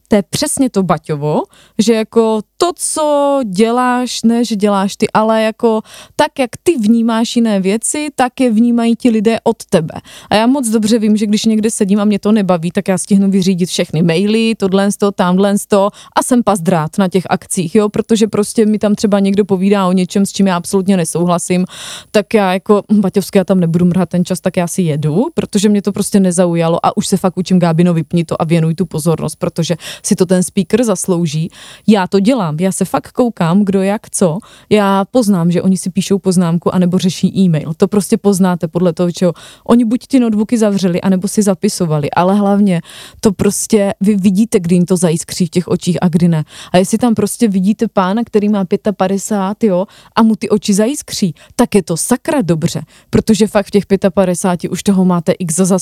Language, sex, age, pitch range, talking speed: Czech, female, 20-39, 180-220 Hz, 205 wpm